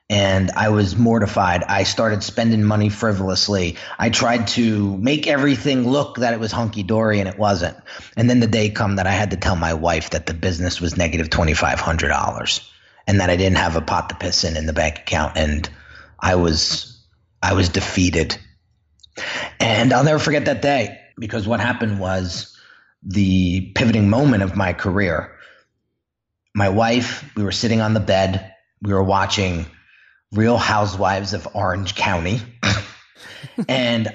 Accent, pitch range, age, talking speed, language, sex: American, 90-115 Hz, 30-49, 165 wpm, English, male